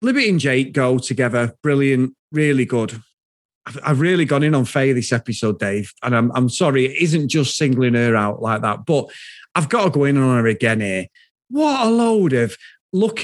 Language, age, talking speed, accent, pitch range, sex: English, 30-49, 205 wpm, British, 130-190 Hz, male